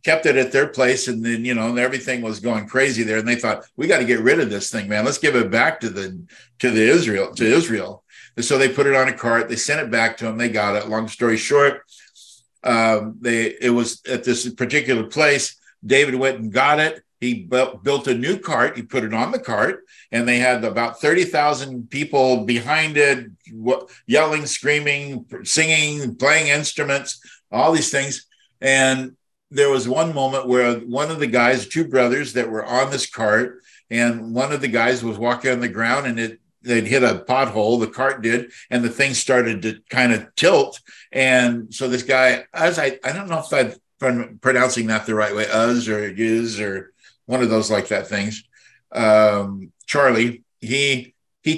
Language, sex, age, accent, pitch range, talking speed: English, male, 60-79, American, 115-140 Hz, 200 wpm